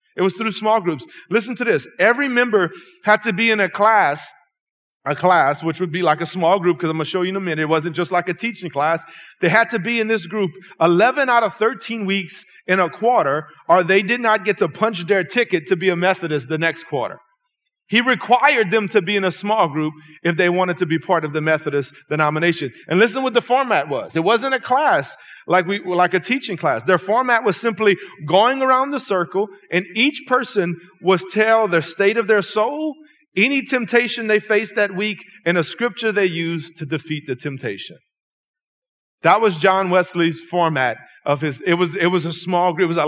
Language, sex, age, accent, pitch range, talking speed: English, male, 30-49, American, 175-240 Hz, 220 wpm